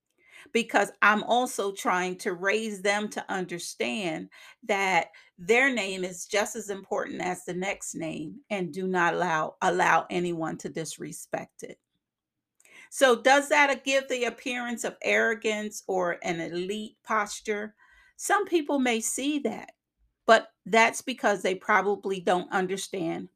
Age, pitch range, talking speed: 40-59, 185-240 Hz, 135 wpm